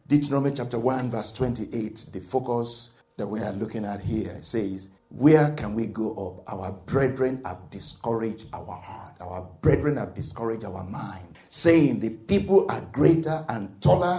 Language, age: English, 50-69